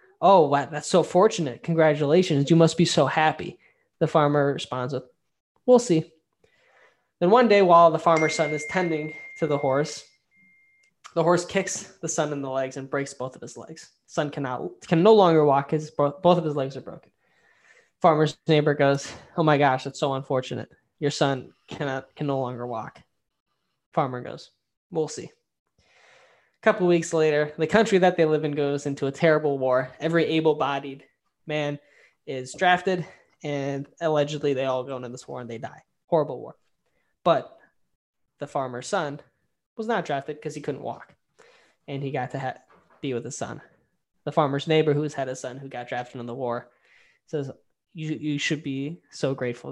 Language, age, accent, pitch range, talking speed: English, 10-29, American, 135-165 Hz, 180 wpm